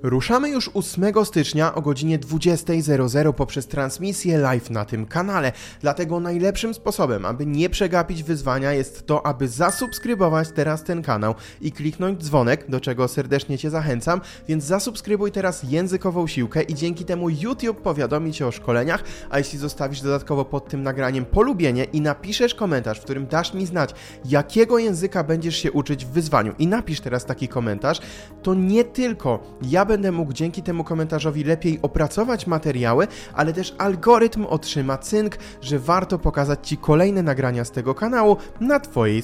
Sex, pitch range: male, 135-185 Hz